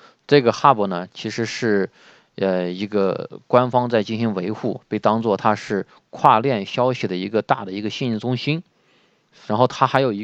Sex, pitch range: male, 105-135 Hz